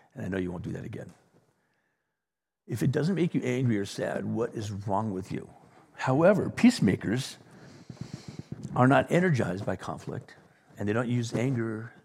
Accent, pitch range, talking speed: American, 105-150 Hz, 165 wpm